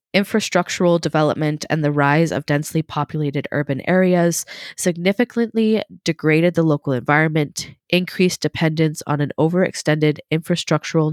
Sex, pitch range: female, 150-185 Hz